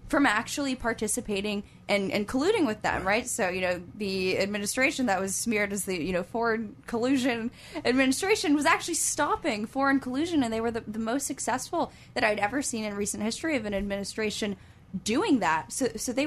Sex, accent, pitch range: female, American, 190-255 Hz